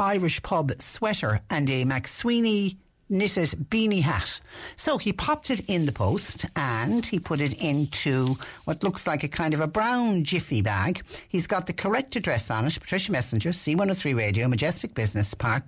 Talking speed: 175 wpm